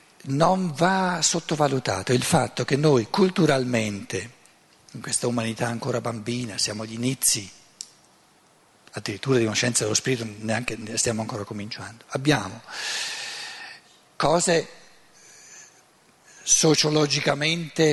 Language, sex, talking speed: Italian, male, 100 wpm